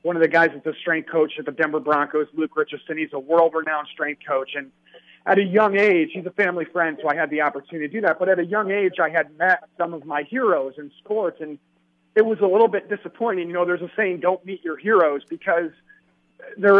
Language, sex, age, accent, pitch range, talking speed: English, male, 40-59, American, 160-200 Hz, 245 wpm